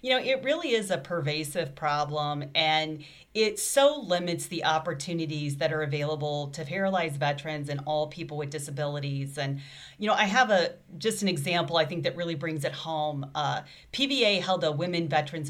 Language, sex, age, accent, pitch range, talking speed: English, female, 40-59, American, 150-180 Hz, 180 wpm